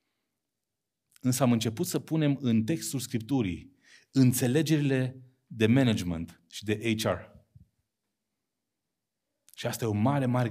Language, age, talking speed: Romanian, 30-49, 115 wpm